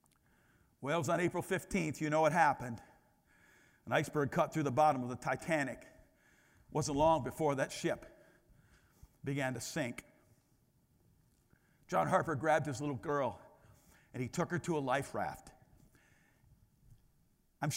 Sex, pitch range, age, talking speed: male, 155-250 Hz, 50-69, 145 wpm